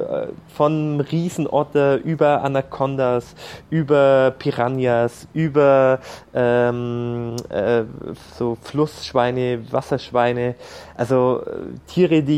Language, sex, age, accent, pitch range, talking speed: German, male, 20-39, German, 125-155 Hz, 75 wpm